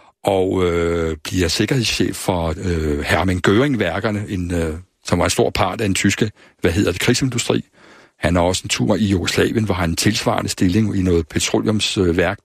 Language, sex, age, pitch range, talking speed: Danish, male, 60-79, 90-115 Hz, 180 wpm